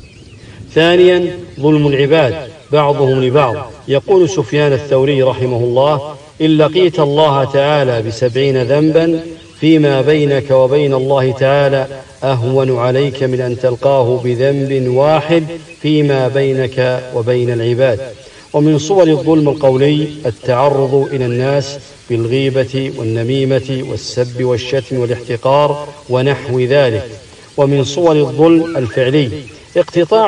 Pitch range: 130-150 Hz